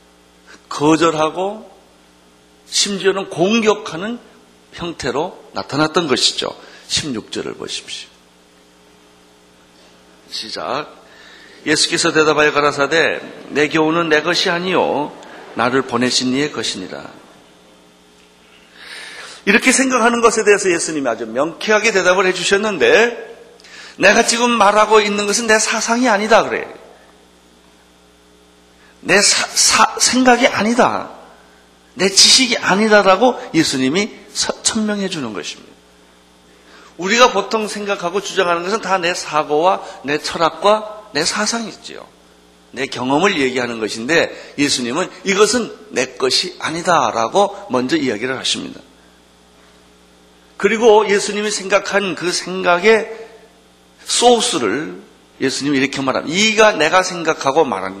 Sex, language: male, Korean